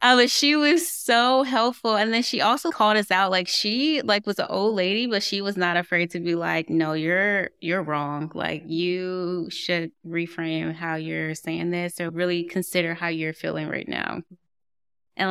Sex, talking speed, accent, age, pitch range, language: female, 190 wpm, American, 20-39, 165-190 Hz, English